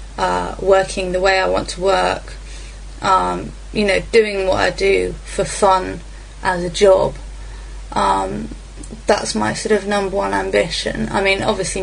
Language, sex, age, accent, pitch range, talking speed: English, female, 20-39, British, 175-200 Hz, 155 wpm